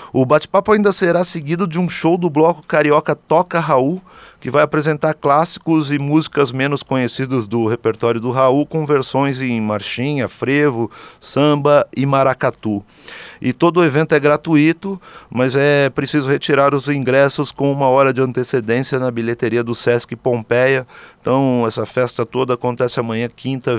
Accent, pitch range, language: Brazilian, 120-145 Hz, Portuguese